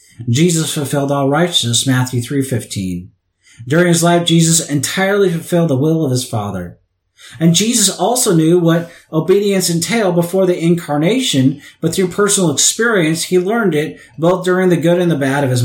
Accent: American